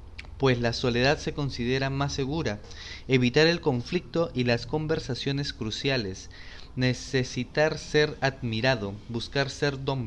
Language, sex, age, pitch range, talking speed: English, male, 20-39, 110-140 Hz, 120 wpm